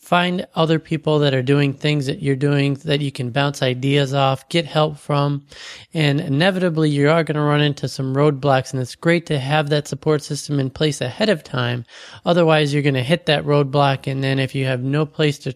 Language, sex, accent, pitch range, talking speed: English, male, American, 135-155 Hz, 220 wpm